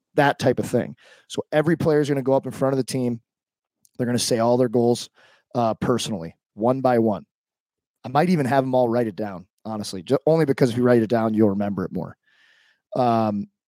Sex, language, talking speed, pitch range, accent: male, English, 230 wpm, 115-135 Hz, American